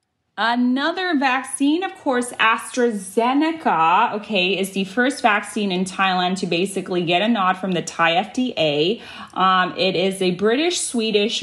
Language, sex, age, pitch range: Thai, female, 30-49, 170-215 Hz